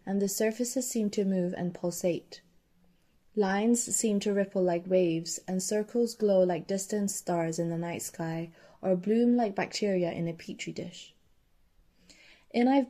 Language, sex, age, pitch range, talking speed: English, female, 20-39, 180-220 Hz, 160 wpm